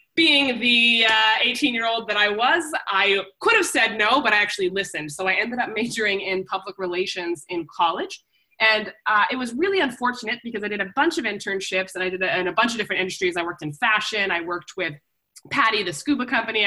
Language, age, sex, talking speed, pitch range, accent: English, 20-39, female, 215 wpm, 185-265 Hz, American